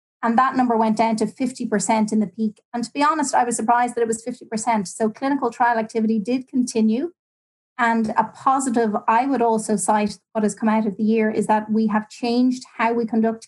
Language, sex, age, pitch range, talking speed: English, female, 30-49, 215-235 Hz, 220 wpm